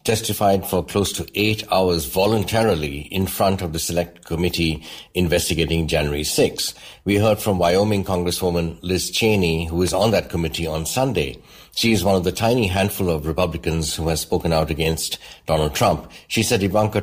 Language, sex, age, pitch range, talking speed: English, male, 60-79, 85-100 Hz, 175 wpm